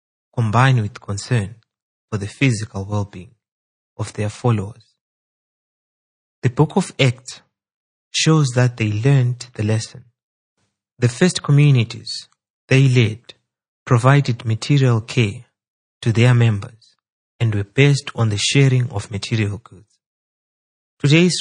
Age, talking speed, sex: 30-49, 115 wpm, male